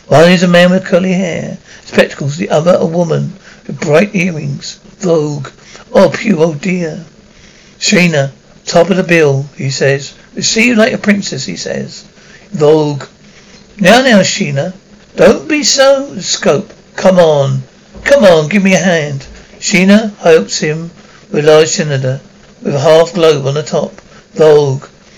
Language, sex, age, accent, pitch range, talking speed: English, male, 60-79, British, 160-200 Hz, 160 wpm